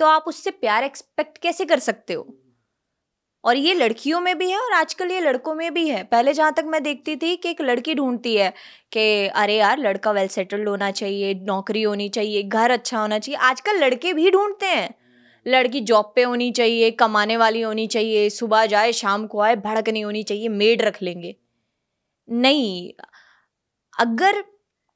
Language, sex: Punjabi, female